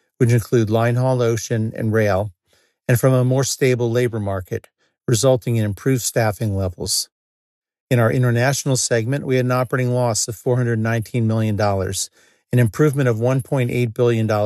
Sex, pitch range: male, 110-125 Hz